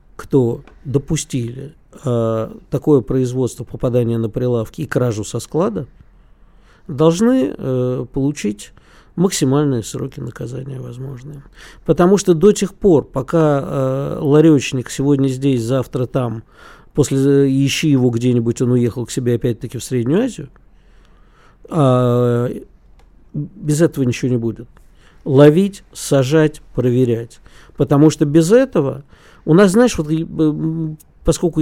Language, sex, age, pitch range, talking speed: Russian, male, 50-69, 125-165 Hz, 120 wpm